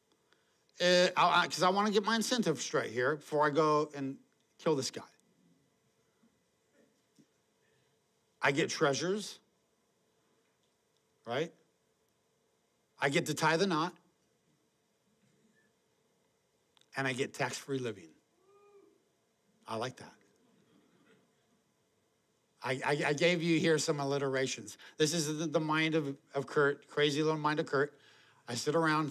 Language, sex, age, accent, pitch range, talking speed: English, male, 60-79, American, 155-225 Hz, 120 wpm